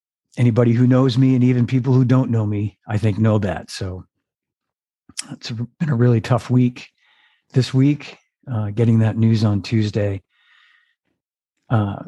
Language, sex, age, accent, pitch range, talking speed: English, male, 50-69, American, 105-125 Hz, 155 wpm